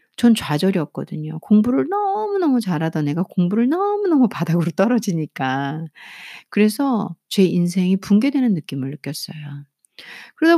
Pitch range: 170-255 Hz